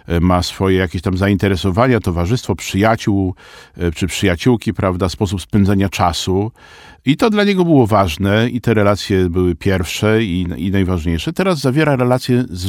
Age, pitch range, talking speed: 50-69, 95-125 Hz, 145 wpm